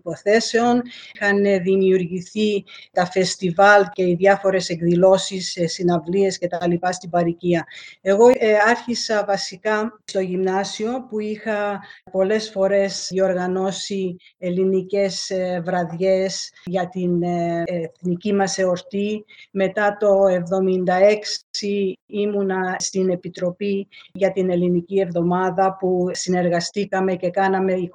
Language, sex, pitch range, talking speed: Greek, female, 180-200 Hz, 100 wpm